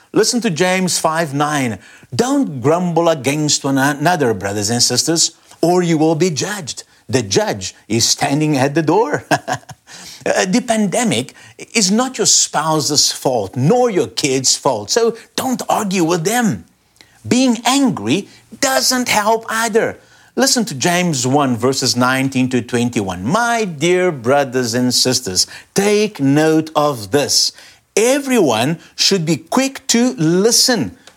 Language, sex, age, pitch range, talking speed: English, male, 50-69, 145-235 Hz, 135 wpm